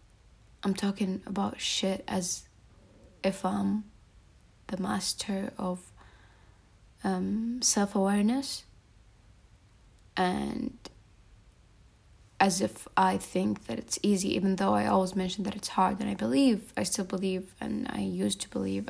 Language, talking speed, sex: Arabic, 125 wpm, female